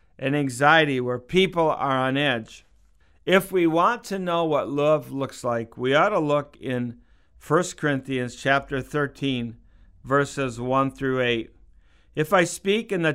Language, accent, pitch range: English, American, 125-155 Hz